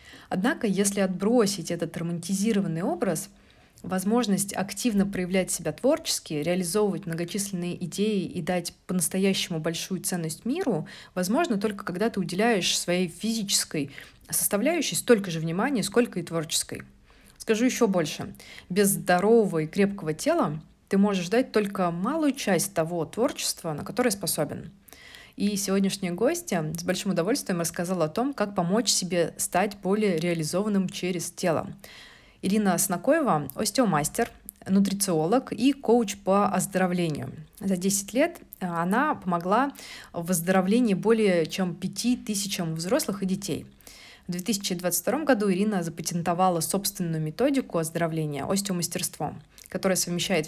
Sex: female